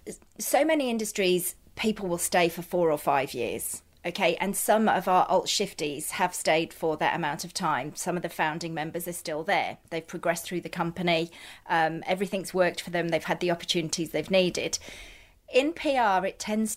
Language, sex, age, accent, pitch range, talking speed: English, female, 30-49, British, 175-215 Hz, 190 wpm